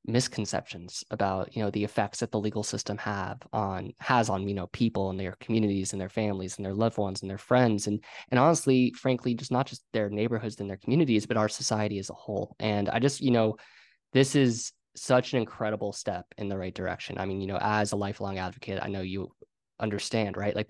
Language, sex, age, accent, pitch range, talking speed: English, male, 20-39, American, 100-115 Hz, 225 wpm